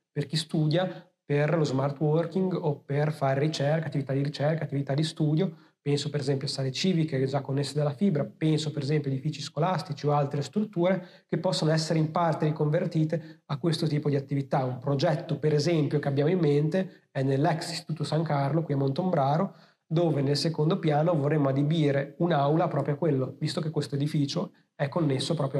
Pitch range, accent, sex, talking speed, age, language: 140-165 Hz, native, male, 190 wpm, 30-49, Italian